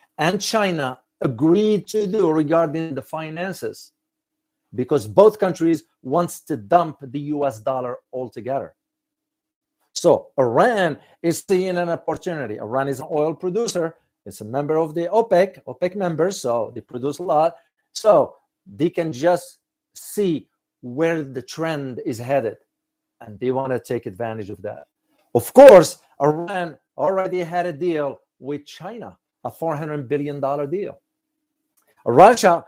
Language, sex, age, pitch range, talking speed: English, male, 50-69, 130-180 Hz, 140 wpm